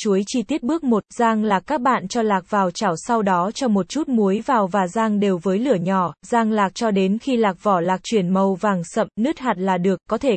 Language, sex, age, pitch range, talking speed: Vietnamese, female, 20-39, 195-245 Hz, 255 wpm